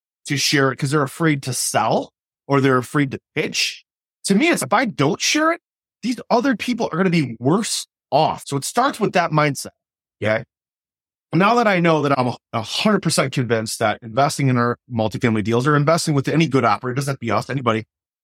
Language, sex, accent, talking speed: English, male, American, 215 wpm